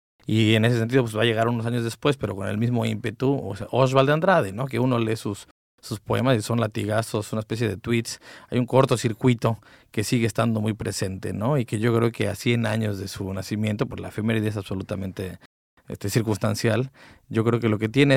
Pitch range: 110-125 Hz